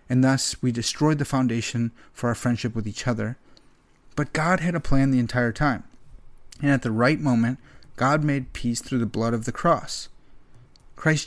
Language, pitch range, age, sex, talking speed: English, 120-145 Hz, 30-49, male, 185 wpm